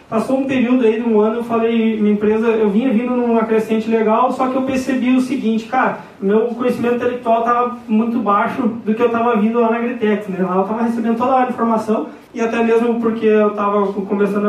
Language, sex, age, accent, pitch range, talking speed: Portuguese, male, 20-39, Brazilian, 195-225 Hz, 220 wpm